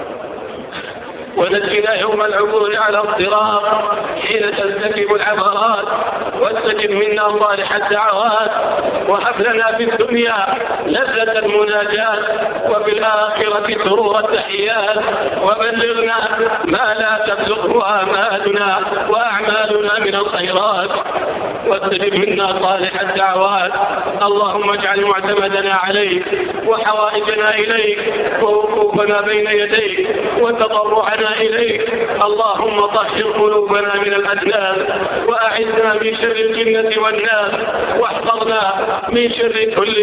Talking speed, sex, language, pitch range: 85 wpm, male, English, 205-225 Hz